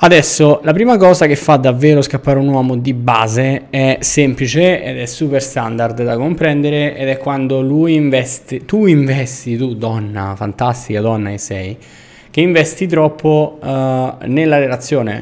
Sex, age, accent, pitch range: male, 20-39, native, 115-145 Hz